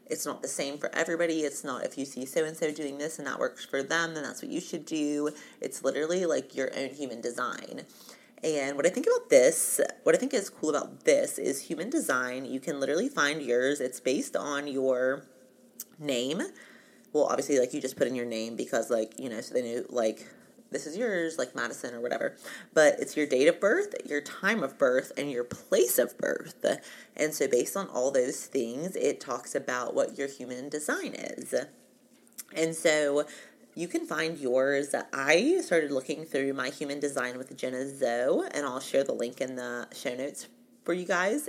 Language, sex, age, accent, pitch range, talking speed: English, female, 30-49, American, 135-170 Hz, 200 wpm